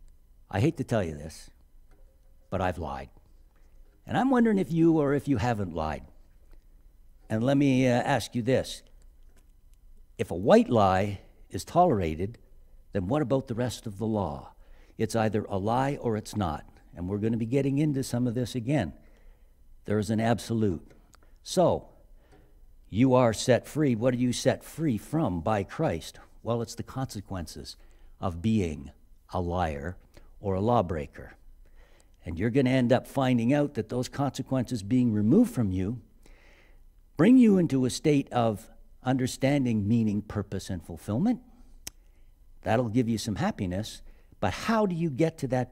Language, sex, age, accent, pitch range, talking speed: English, male, 60-79, American, 90-130 Hz, 160 wpm